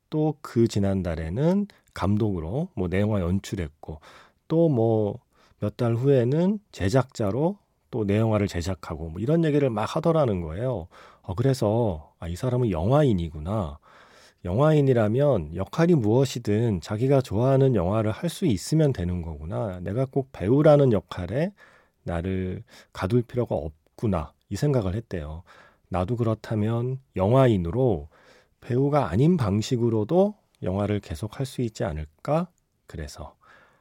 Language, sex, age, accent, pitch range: Korean, male, 40-59, native, 95-135 Hz